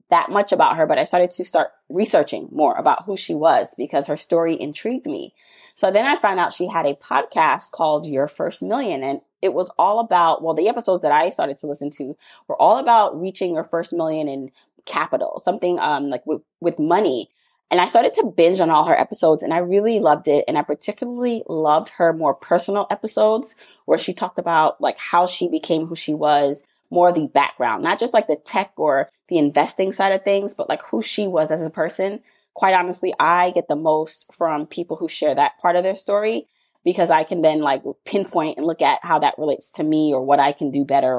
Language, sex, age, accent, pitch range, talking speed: English, female, 20-39, American, 150-200 Hz, 220 wpm